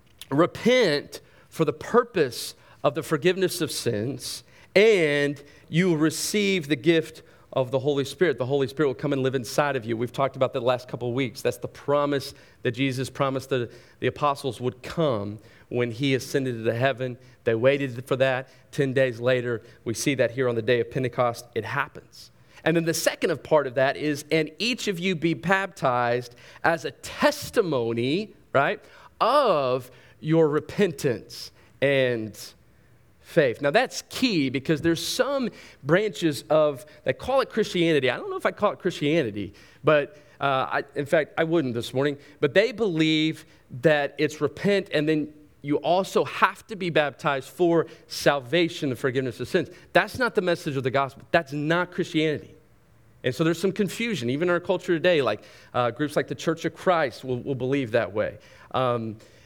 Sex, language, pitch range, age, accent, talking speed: male, English, 125-165 Hz, 40-59, American, 180 wpm